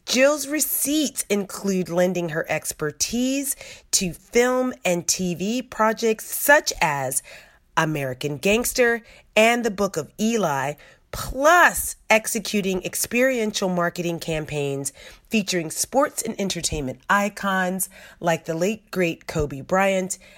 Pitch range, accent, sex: 170-220 Hz, American, female